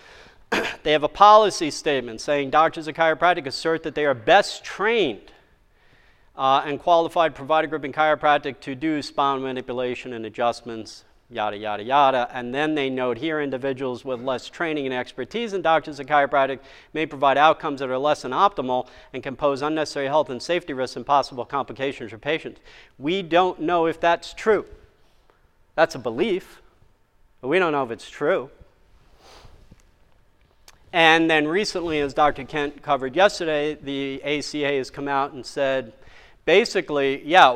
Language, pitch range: English, 135-160 Hz